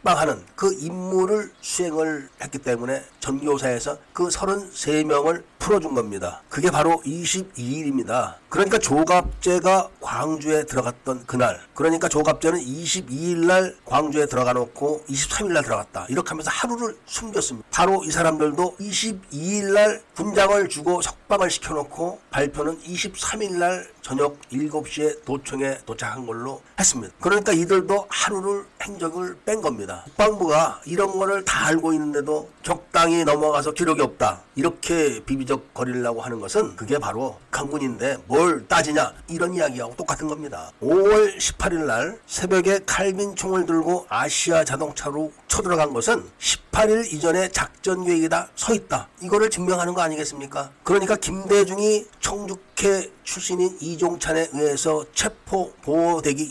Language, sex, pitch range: Korean, male, 145-190 Hz